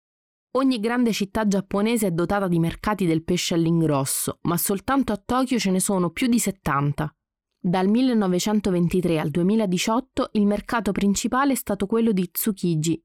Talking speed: 150 wpm